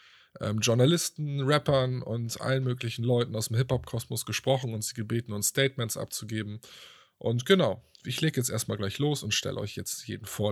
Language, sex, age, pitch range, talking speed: German, male, 20-39, 100-120 Hz, 175 wpm